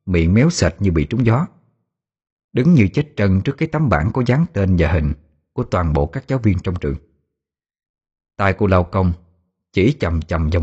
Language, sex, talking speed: Vietnamese, male, 205 wpm